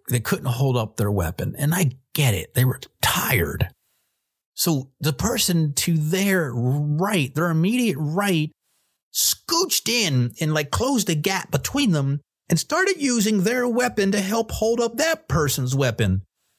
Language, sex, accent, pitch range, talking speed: English, male, American, 150-245 Hz, 155 wpm